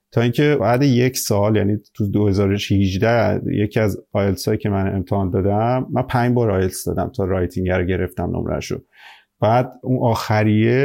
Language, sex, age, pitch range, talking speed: Persian, male, 30-49, 100-120 Hz, 160 wpm